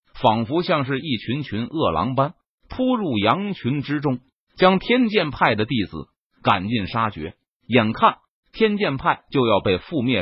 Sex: male